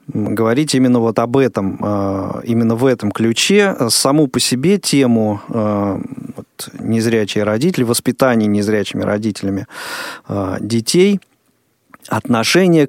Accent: native